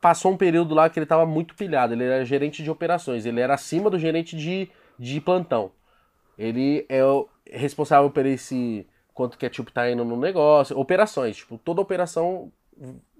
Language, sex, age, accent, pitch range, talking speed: Portuguese, male, 20-39, Brazilian, 130-185 Hz, 180 wpm